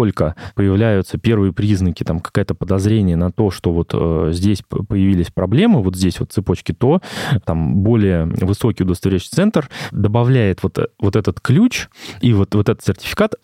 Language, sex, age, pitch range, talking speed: Russian, male, 20-39, 95-125 Hz, 150 wpm